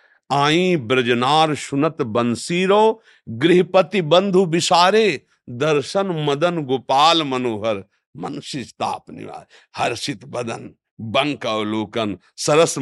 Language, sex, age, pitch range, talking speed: Hindi, male, 60-79, 115-150 Hz, 80 wpm